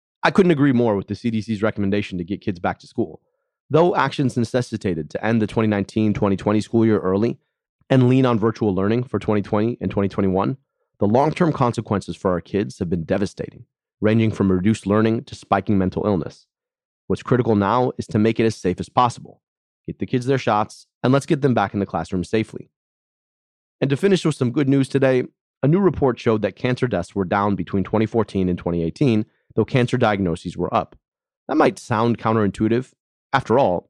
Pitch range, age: 100-125 Hz, 30-49